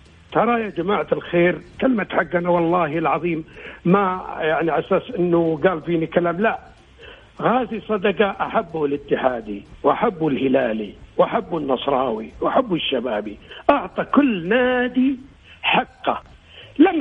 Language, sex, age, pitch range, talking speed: Arabic, male, 60-79, 165-205 Hz, 110 wpm